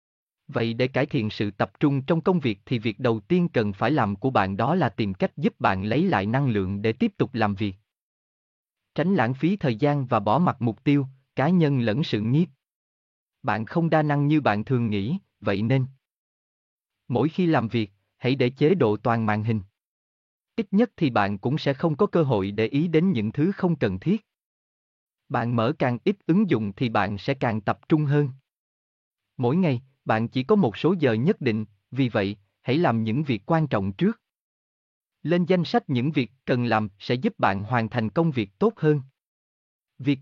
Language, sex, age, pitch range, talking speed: Vietnamese, male, 30-49, 110-155 Hz, 205 wpm